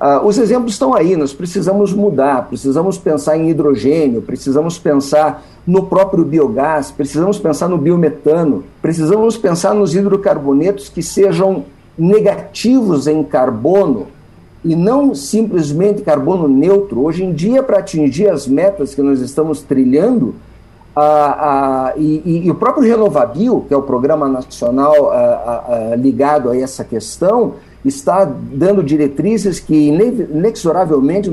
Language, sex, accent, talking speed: Portuguese, male, Brazilian, 130 wpm